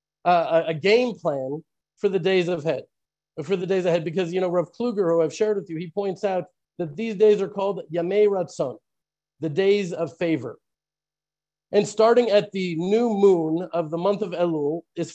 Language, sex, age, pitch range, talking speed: English, male, 40-59, 170-215 Hz, 195 wpm